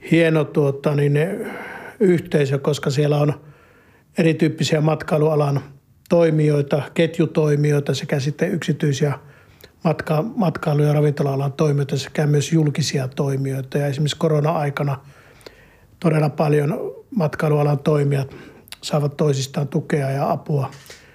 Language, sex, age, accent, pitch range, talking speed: Finnish, male, 50-69, native, 140-160 Hz, 100 wpm